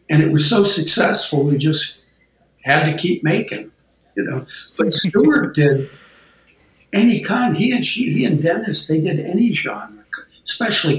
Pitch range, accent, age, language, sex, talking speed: 140-170 Hz, American, 60-79, English, male, 160 wpm